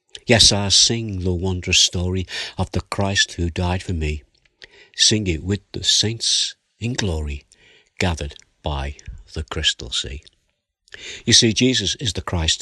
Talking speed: 145 wpm